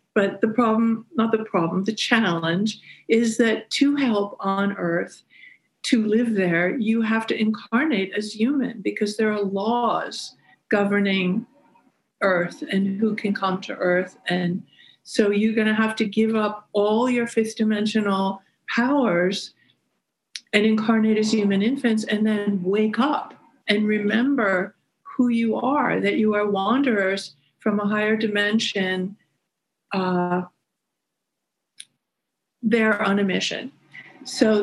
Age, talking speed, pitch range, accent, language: 50-69, 135 wpm, 200-240 Hz, American, English